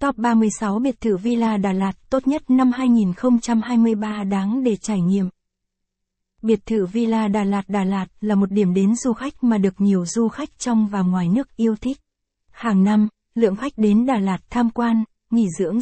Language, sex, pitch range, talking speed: Vietnamese, female, 200-235 Hz, 190 wpm